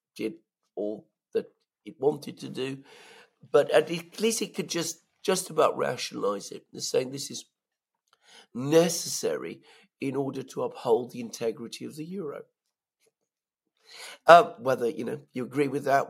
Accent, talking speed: British, 140 wpm